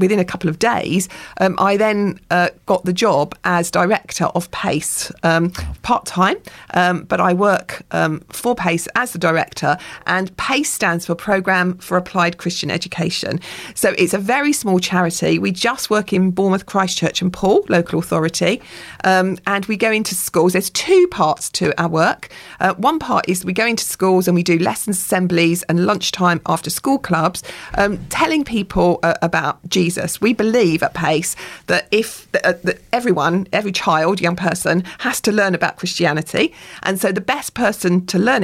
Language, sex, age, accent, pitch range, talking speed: English, female, 40-59, British, 170-200 Hz, 175 wpm